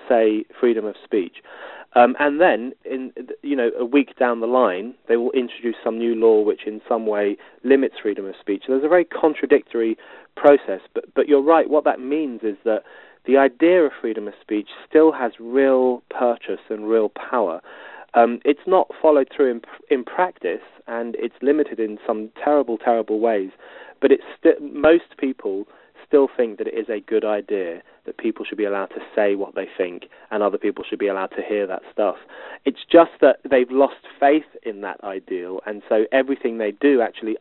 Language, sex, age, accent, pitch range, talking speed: English, male, 30-49, British, 115-155 Hz, 195 wpm